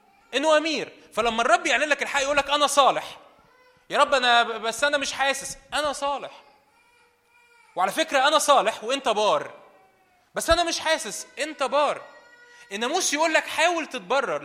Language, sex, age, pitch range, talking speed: Arabic, male, 20-39, 205-300 Hz, 155 wpm